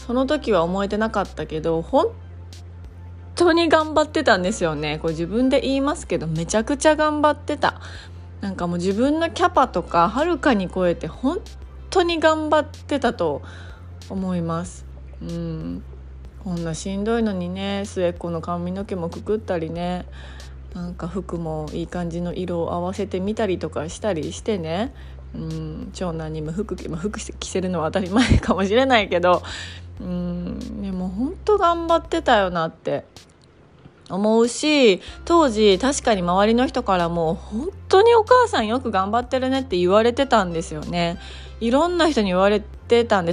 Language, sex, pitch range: Japanese, female, 165-230 Hz